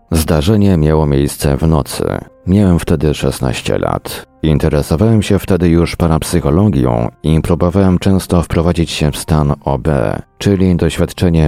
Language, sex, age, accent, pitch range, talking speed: Polish, male, 40-59, native, 75-90 Hz, 125 wpm